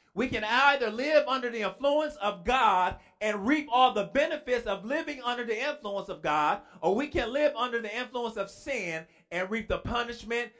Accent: American